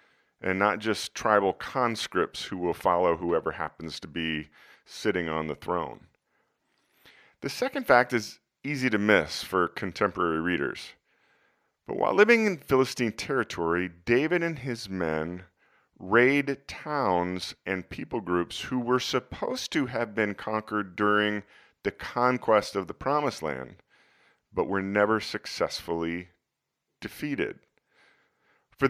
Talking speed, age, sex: 125 wpm, 40-59, male